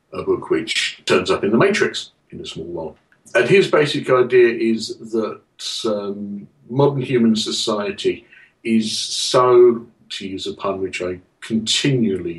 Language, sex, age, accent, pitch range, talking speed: English, male, 50-69, British, 110-155 Hz, 150 wpm